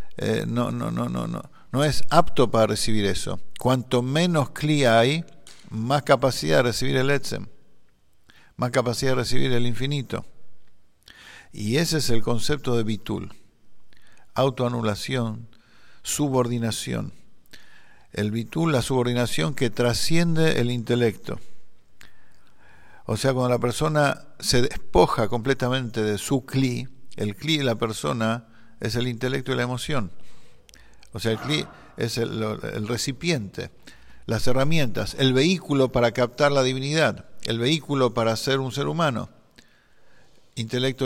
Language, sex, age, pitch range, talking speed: English, male, 50-69, 115-140 Hz, 135 wpm